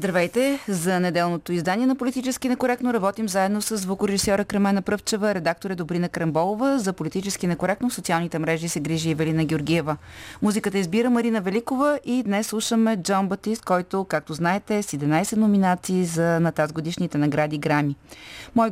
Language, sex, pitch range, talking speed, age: Bulgarian, female, 165-210 Hz, 150 wpm, 30-49